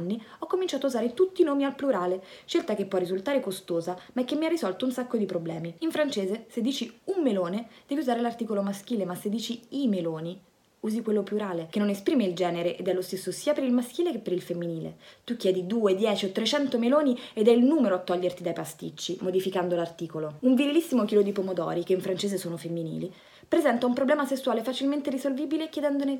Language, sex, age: Italian, female, 20-39